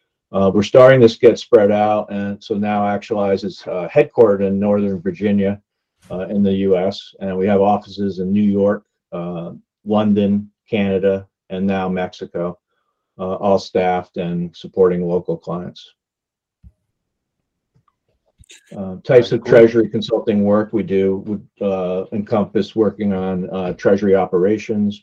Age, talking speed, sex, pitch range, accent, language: 50-69, 135 wpm, male, 95-105 Hz, American, English